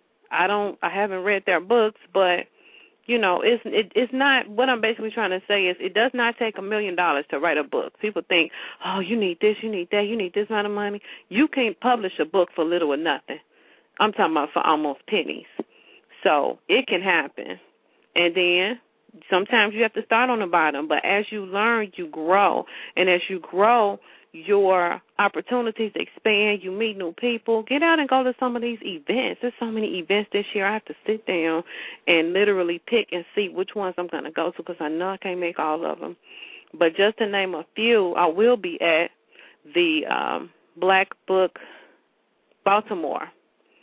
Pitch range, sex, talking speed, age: 175-230 Hz, female, 205 wpm, 40-59